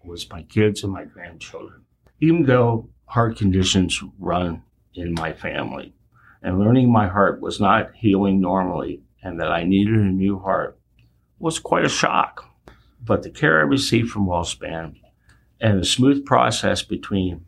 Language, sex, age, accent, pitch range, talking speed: English, male, 60-79, American, 90-115 Hz, 155 wpm